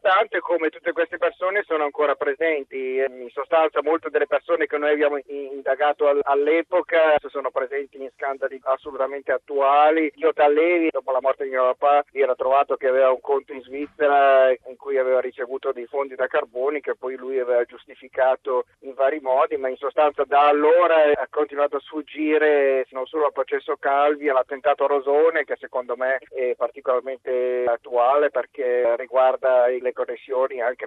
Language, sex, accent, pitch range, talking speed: Italian, male, native, 130-155 Hz, 165 wpm